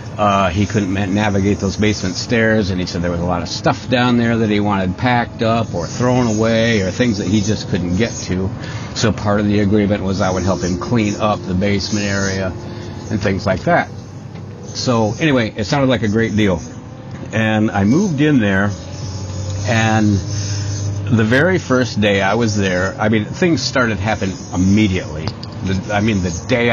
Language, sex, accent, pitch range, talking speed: English, male, American, 100-115 Hz, 190 wpm